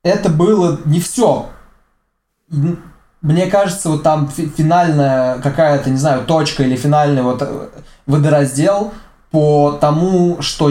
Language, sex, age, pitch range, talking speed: Russian, male, 20-39, 135-160 Hz, 120 wpm